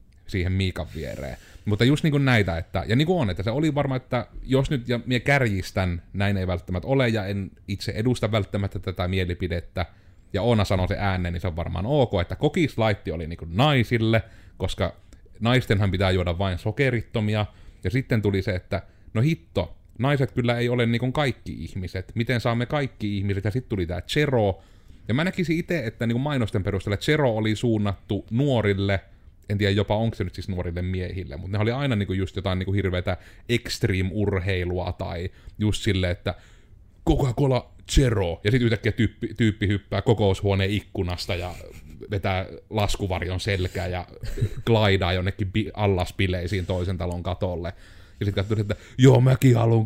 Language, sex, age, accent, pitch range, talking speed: Finnish, male, 30-49, native, 95-115 Hz, 165 wpm